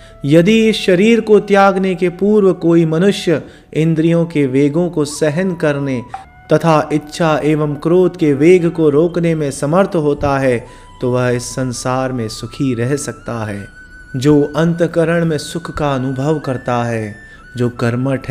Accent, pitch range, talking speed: native, 125-165 Hz, 150 wpm